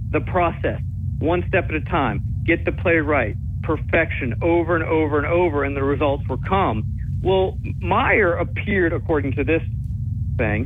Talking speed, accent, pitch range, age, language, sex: 165 wpm, American, 105-140 Hz, 40-59, English, male